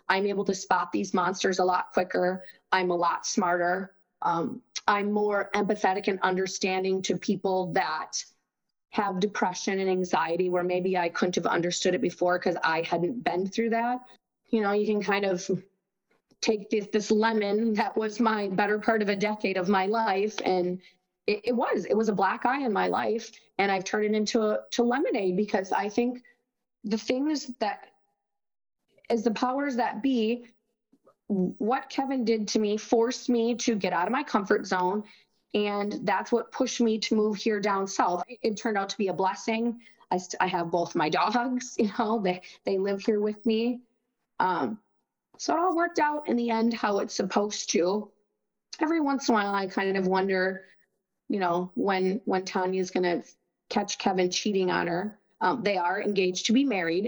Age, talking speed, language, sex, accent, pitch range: 30-49, 190 wpm, English, female, American, 185-230 Hz